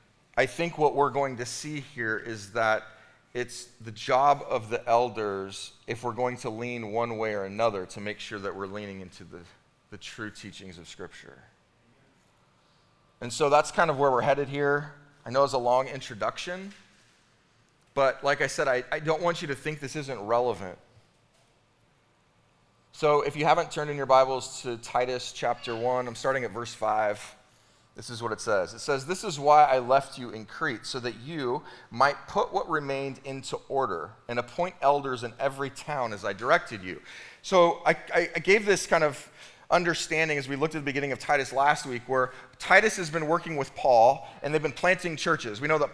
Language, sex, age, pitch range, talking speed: English, male, 30-49, 120-155 Hz, 195 wpm